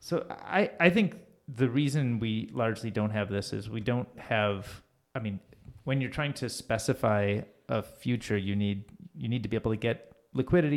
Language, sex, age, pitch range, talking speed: English, male, 30-49, 105-130 Hz, 190 wpm